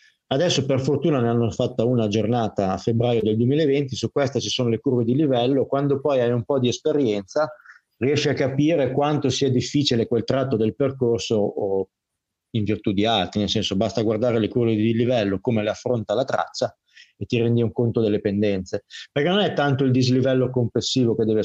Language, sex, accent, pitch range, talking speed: Italian, male, native, 110-135 Hz, 200 wpm